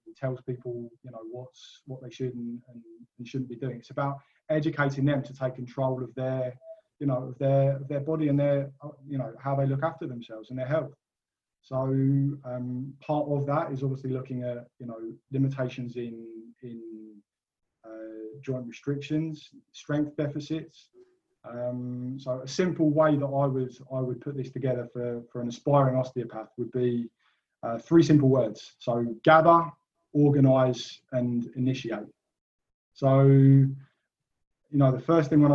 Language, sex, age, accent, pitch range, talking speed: English, male, 20-39, British, 120-145 Hz, 160 wpm